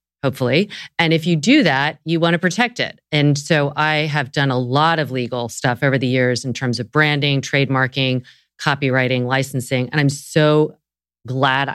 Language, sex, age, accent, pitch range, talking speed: English, female, 30-49, American, 135-165 Hz, 180 wpm